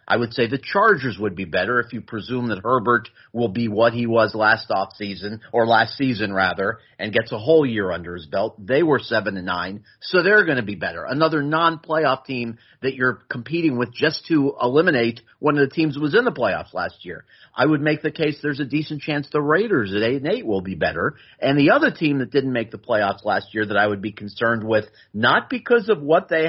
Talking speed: 235 wpm